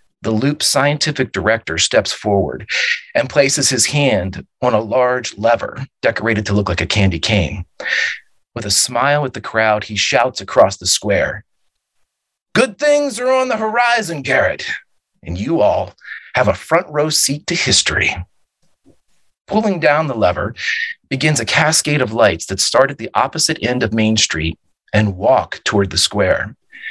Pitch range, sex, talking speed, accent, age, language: 100-145 Hz, male, 160 wpm, American, 40-59, English